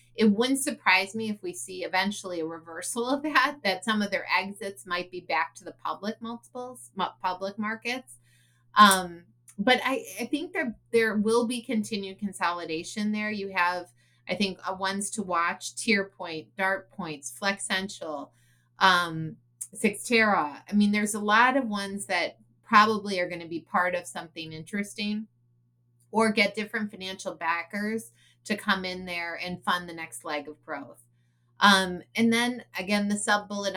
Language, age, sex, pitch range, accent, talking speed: English, 30-49, female, 170-215 Hz, American, 160 wpm